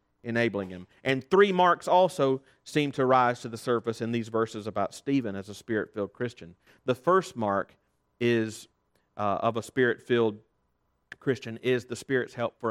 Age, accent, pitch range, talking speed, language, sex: 40-59, American, 110-155 Hz, 165 wpm, English, male